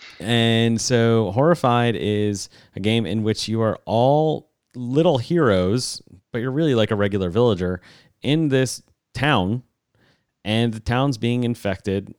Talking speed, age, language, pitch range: 140 wpm, 30-49, English, 100-125 Hz